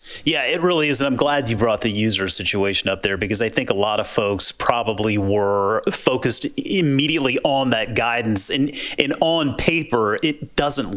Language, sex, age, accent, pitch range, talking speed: English, male, 30-49, American, 110-145 Hz, 185 wpm